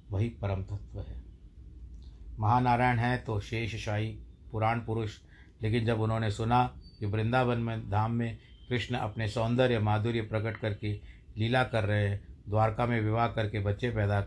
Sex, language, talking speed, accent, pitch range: male, Hindi, 145 wpm, native, 100-115 Hz